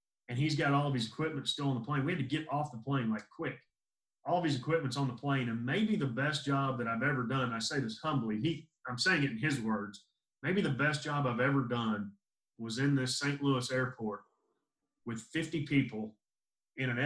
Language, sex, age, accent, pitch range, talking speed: English, male, 30-49, American, 120-145 Hz, 230 wpm